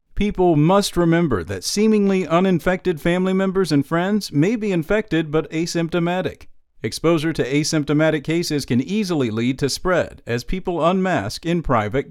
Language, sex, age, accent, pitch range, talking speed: English, male, 50-69, American, 135-185 Hz, 145 wpm